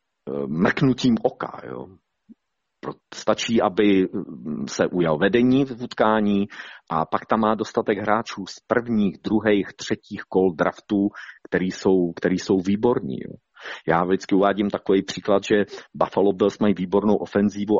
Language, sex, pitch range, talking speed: Slovak, male, 90-110 Hz, 130 wpm